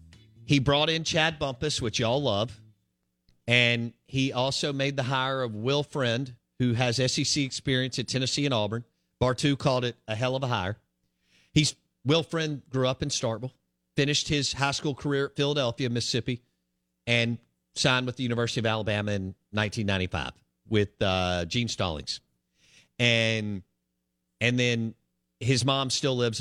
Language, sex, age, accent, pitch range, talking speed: English, male, 50-69, American, 95-135 Hz, 155 wpm